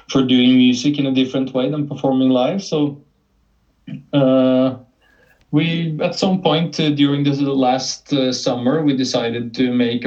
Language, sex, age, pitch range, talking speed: English, male, 20-39, 120-135 Hz, 160 wpm